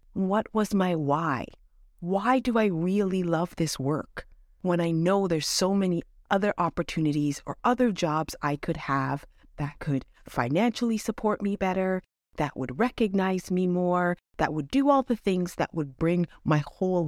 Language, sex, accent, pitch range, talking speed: English, female, American, 145-200 Hz, 165 wpm